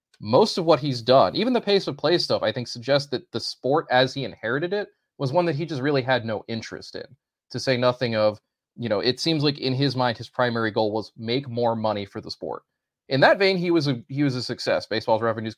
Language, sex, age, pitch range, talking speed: English, male, 30-49, 105-125 Hz, 250 wpm